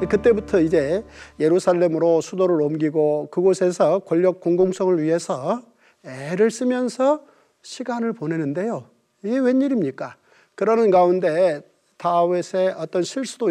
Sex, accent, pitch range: male, native, 170-240 Hz